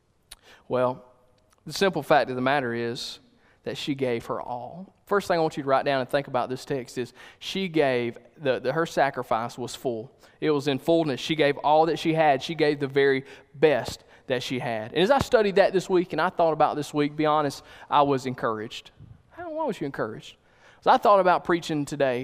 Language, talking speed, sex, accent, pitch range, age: English, 230 wpm, male, American, 130-185 Hz, 20-39